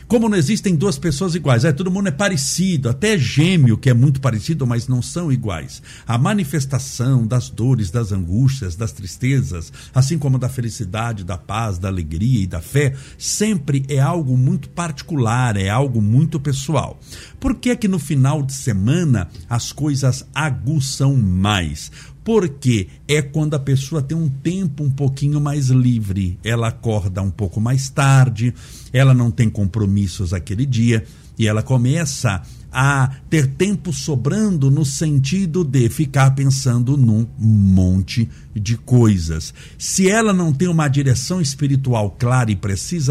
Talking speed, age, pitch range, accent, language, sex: 155 wpm, 60-79, 115-150 Hz, Brazilian, Portuguese, male